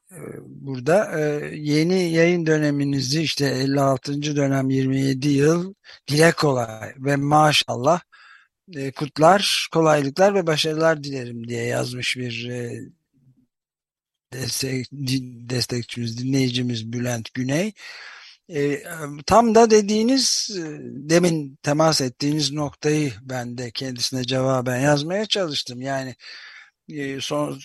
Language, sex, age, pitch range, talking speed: Turkish, male, 50-69, 135-165 Hz, 90 wpm